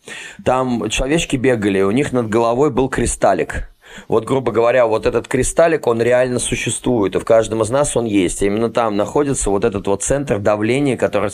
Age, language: 20-39, Russian